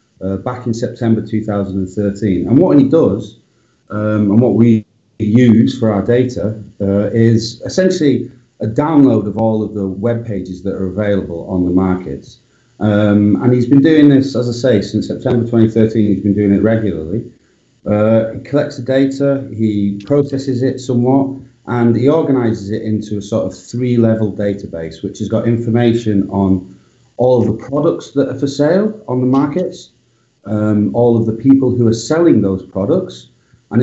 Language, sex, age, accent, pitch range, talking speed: English, male, 40-59, British, 105-130 Hz, 170 wpm